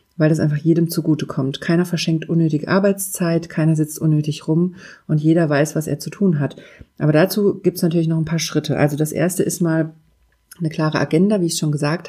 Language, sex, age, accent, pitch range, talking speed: German, female, 40-59, German, 155-180 Hz, 210 wpm